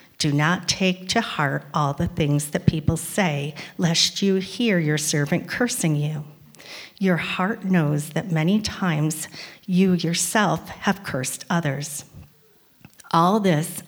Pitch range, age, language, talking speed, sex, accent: 155-185 Hz, 40-59, English, 135 wpm, female, American